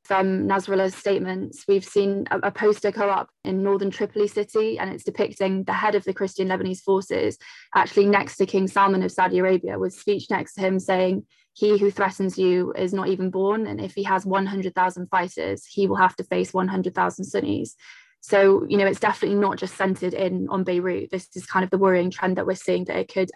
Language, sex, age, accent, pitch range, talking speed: English, female, 20-39, British, 185-200 Hz, 215 wpm